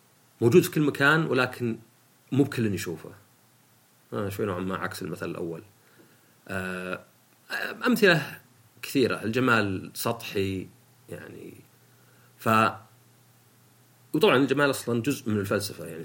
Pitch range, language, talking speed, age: 100-130 Hz, Arabic, 105 wpm, 40-59